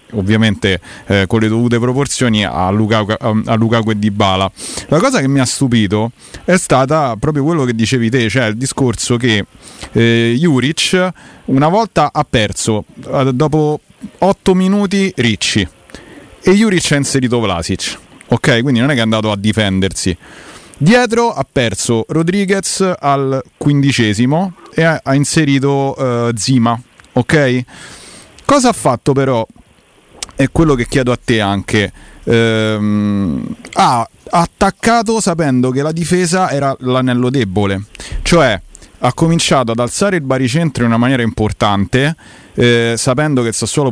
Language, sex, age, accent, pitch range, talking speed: Italian, male, 30-49, native, 110-140 Hz, 140 wpm